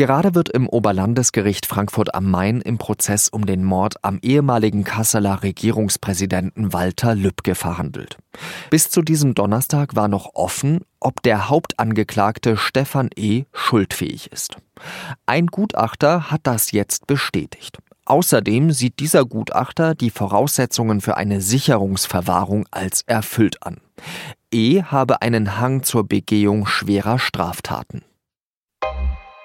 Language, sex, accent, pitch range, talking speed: German, male, German, 100-130 Hz, 120 wpm